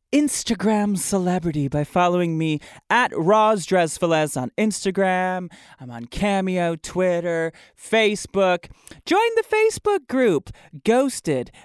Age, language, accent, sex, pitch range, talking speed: 20-39, English, American, male, 140-200 Hz, 105 wpm